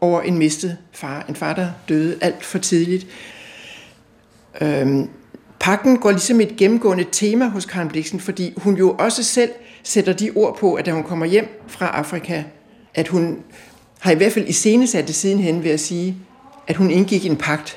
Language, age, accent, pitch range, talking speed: Danish, 60-79, native, 165-210 Hz, 180 wpm